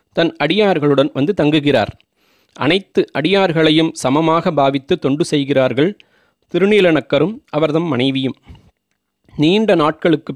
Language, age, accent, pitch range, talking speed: Tamil, 30-49, native, 140-170 Hz, 85 wpm